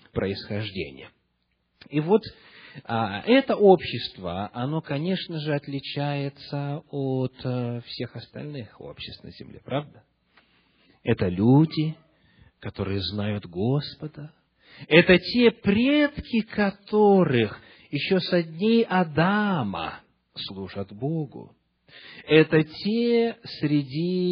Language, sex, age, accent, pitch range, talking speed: Russian, male, 40-59, native, 115-165 Hz, 80 wpm